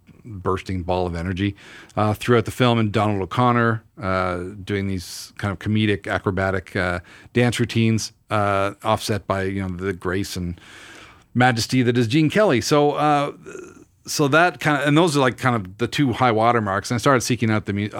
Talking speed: 190 wpm